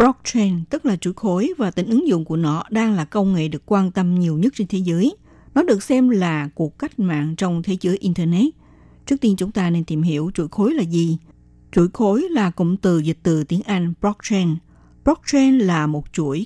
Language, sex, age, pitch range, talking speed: Vietnamese, female, 60-79, 170-230 Hz, 215 wpm